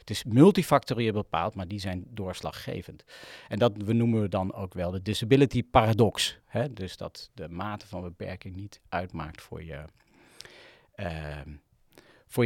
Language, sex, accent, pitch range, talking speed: Dutch, male, Dutch, 95-125 Hz, 155 wpm